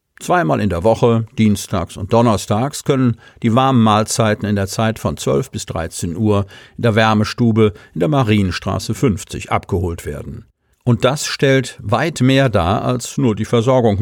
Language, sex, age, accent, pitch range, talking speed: German, male, 50-69, German, 105-130 Hz, 165 wpm